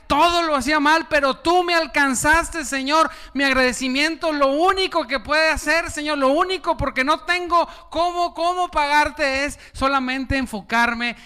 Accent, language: Mexican, Spanish